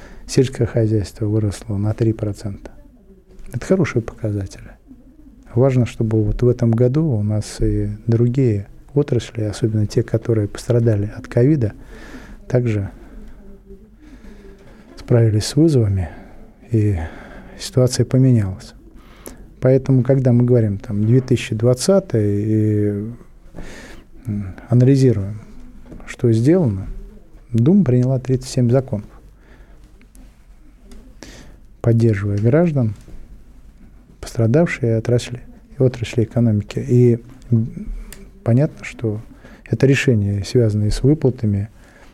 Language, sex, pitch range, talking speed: Russian, male, 110-130 Hz, 85 wpm